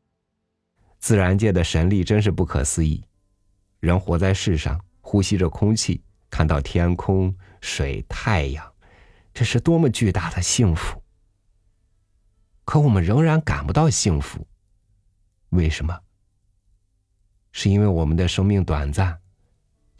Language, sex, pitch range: Chinese, male, 85-105 Hz